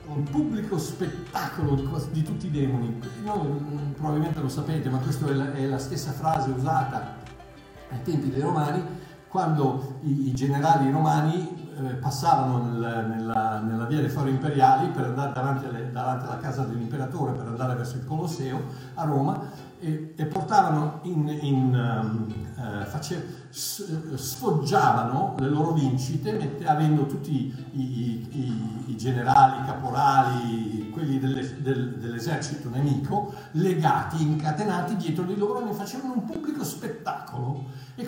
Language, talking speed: Italian, 135 wpm